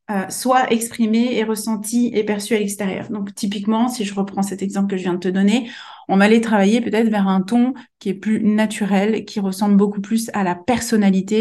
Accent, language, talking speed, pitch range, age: French, French, 215 wpm, 195-230 Hz, 30-49